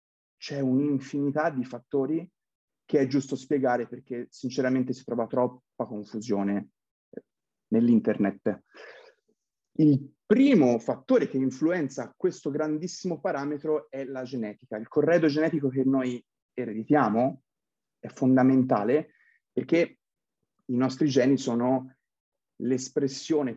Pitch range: 115-145 Hz